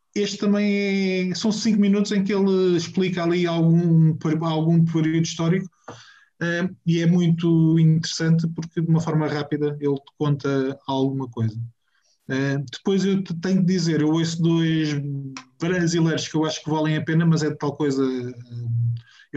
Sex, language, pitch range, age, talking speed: male, Portuguese, 140-160 Hz, 20-39, 165 wpm